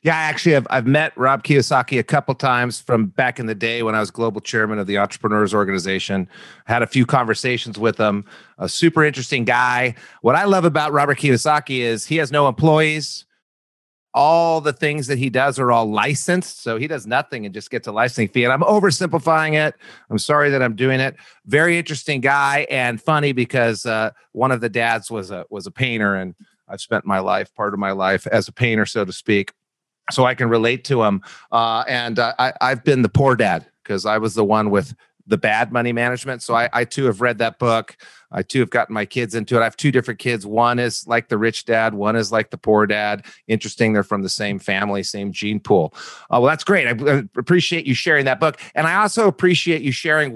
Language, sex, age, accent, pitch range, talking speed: English, male, 40-59, American, 115-150 Hz, 225 wpm